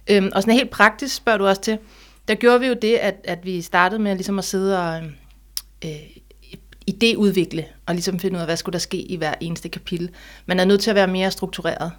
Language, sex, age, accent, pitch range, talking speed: Danish, female, 30-49, native, 180-215 Hz, 230 wpm